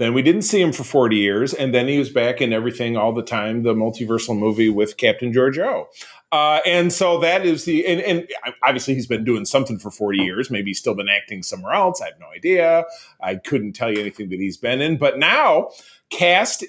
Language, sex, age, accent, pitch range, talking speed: English, male, 30-49, American, 110-165 Hz, 225 wpm